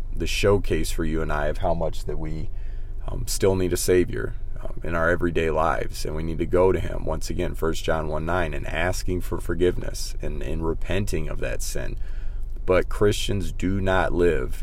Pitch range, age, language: 85-100 Hz, 30-49, English